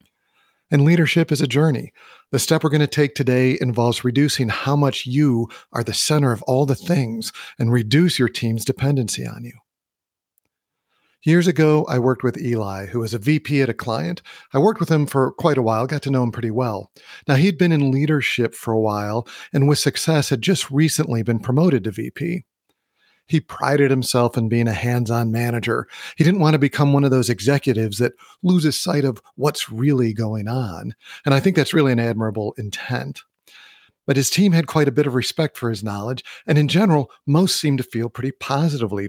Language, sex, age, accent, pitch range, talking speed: English, male, 40-59, American, 120-155 Hz, 200 wpm